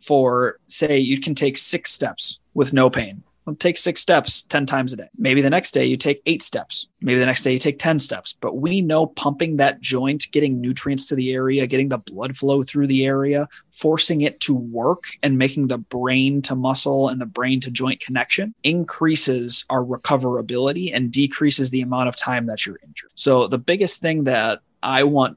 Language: English